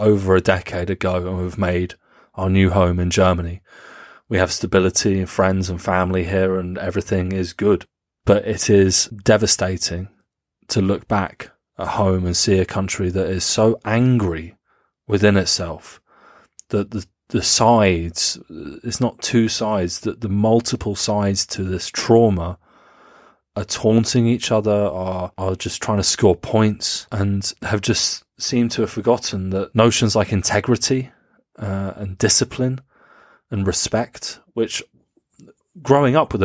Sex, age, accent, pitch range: male, 30-49, British, 95-110 Hz